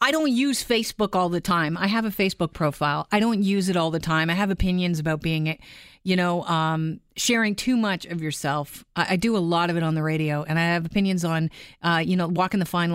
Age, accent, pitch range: 40-59, American, 160-190 Hz